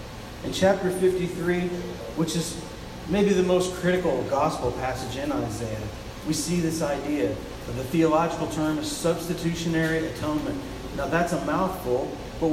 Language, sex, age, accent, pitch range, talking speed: English, male, 40-59, American, 130-180 Hz, 140 wpm